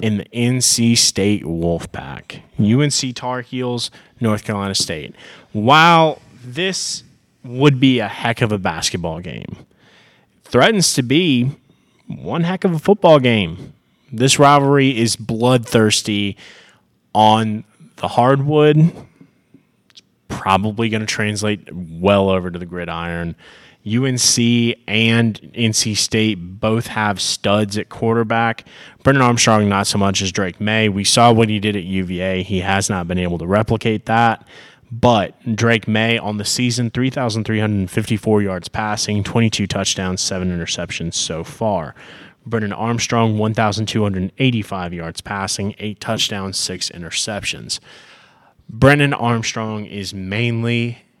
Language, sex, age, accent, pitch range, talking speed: English, male, 20-39, American, 100-120 Hz, 125 wpm